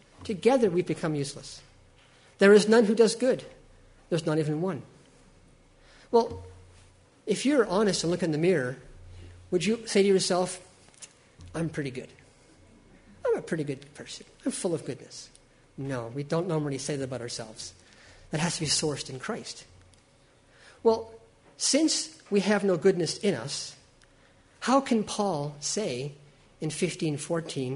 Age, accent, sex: 50-69, American, male